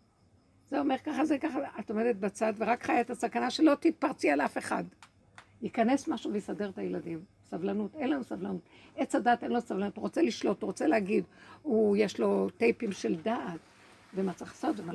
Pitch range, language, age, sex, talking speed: 190-265 Hz, Hebrew, 60-79, female, 185 wpm